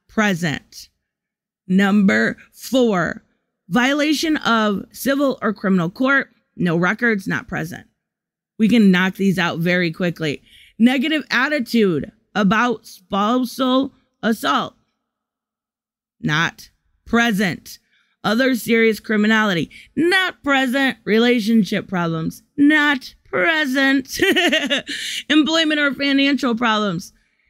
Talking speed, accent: 85 wpm, American